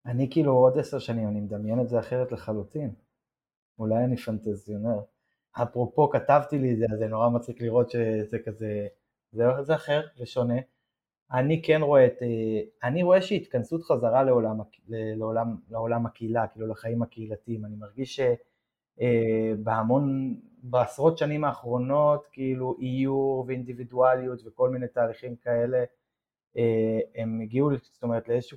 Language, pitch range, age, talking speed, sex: Hebrew, 115-130 Hz, 20-39, 125 wpm, male